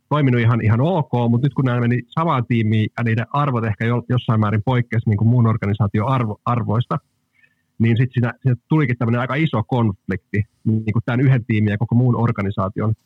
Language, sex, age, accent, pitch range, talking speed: Finnish, male, 30-49, native, 110-130 Hz, 195 wpm